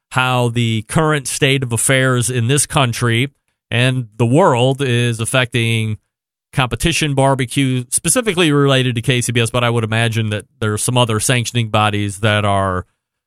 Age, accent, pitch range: 30-49, American, 115-135 Hz